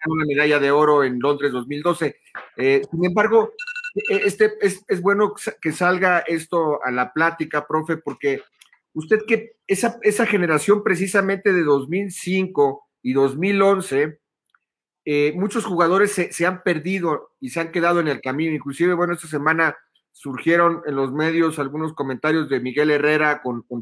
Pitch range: 145-180 Hz